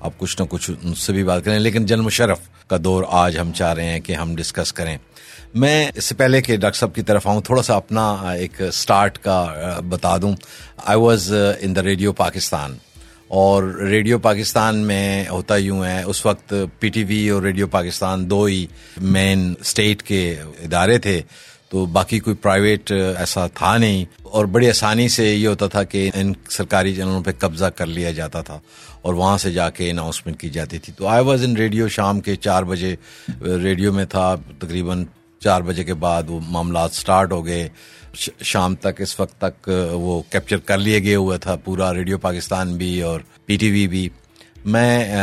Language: Urdu